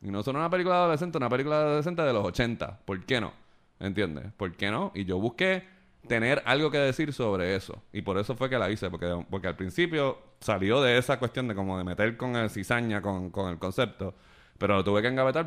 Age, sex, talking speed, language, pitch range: 20-39, male, 230 wpm, Spanish, 95-120 Hz